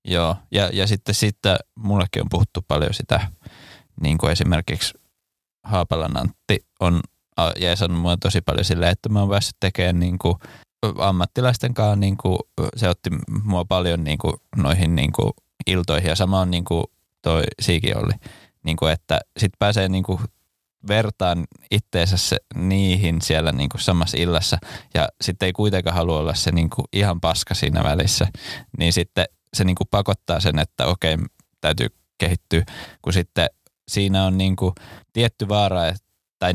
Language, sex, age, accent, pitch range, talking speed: Finnish, male, 20-39, native, 85-100 Hz, 160 wpm